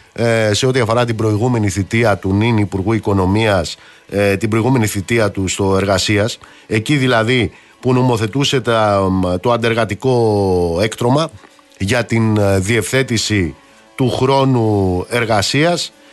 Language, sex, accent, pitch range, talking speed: Greek, male, native, 100-130 Hz, 110 wpm